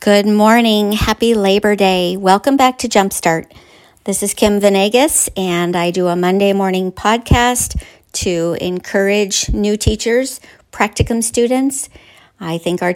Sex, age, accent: female, 50-69, American